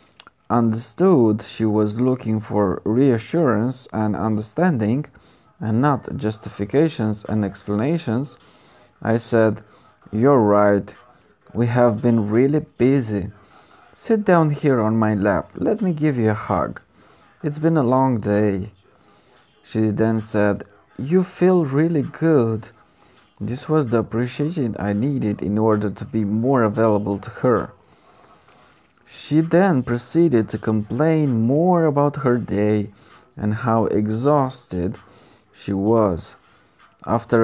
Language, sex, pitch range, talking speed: Romanian, male, 105-145 Hz, 120 wpm